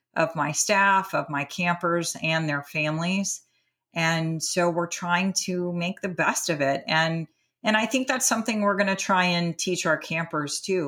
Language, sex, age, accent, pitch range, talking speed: English, female, 40-59, American, 155-180 Hz, 190 wpm